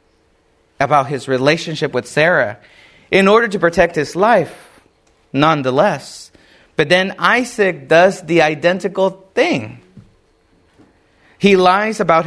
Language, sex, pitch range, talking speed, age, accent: English, male, 115-170 Hz, 110 wpm, 30-49, American